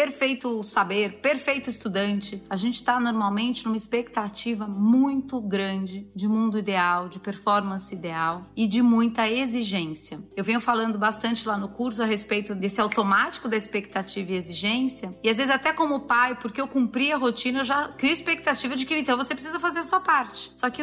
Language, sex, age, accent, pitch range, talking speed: Portuguese, female, 30-49, Brazilian, 200-245 Hz, 180 wpm